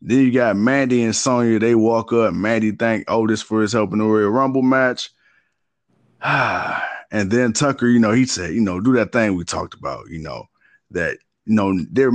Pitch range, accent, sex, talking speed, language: 100-125 Hz, American, male, 200 wpm, English